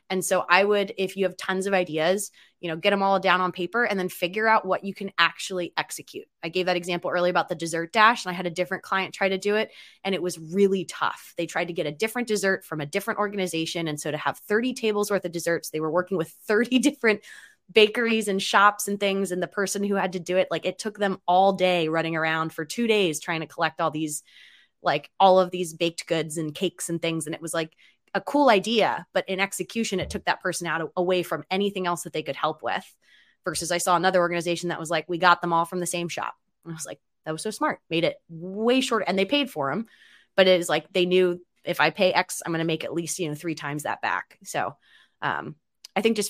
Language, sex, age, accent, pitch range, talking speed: English, female, 20-39, American, 165-195 Hz, 260 wpm